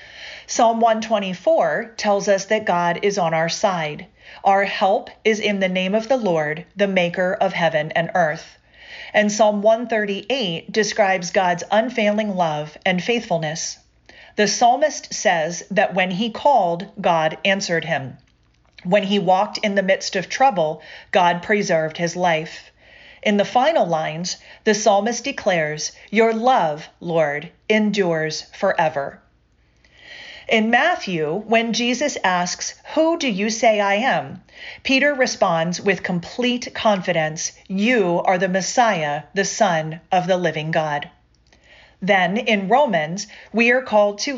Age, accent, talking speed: 40-59, American, 135 wpm